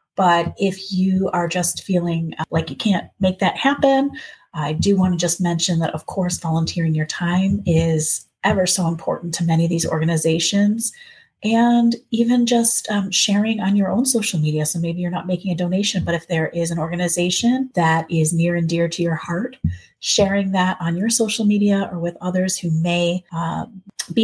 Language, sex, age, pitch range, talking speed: English, female, 30-49, 170-210 Hz, 190 wpm